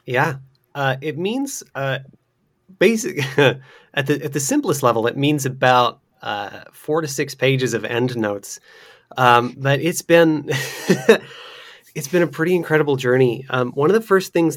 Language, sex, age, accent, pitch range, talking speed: English, male, 30-49, American, 120-150 Hz, 160 wpm